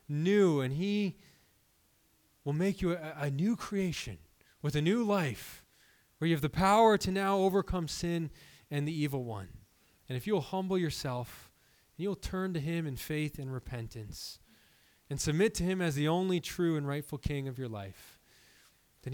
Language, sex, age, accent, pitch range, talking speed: English, male, 20-39, American, 130-190 Hz, 175 wpm